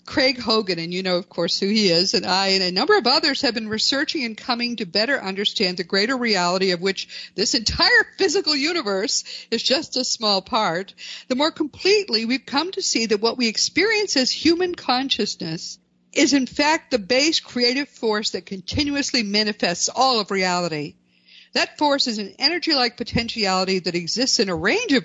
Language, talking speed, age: English, 185 wpm, 50-69